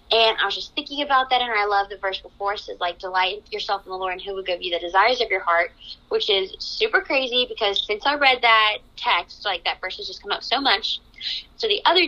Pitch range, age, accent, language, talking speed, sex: 200-270 Hz, 20-39, American, English, 265 wpm, female